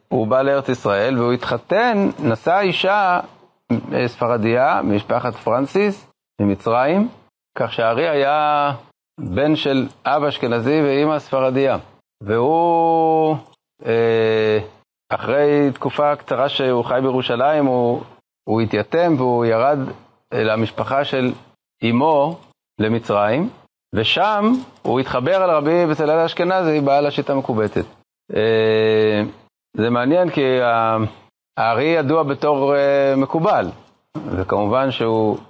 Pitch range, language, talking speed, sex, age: 115-145 Hz, Hebrew, 100 wpm, male, 30-49